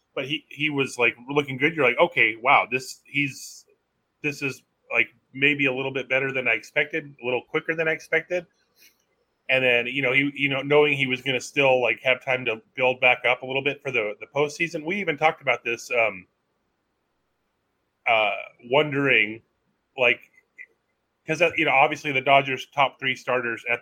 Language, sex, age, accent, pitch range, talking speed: English, male, 30-49, American, 120-145 Hz, 190 wpm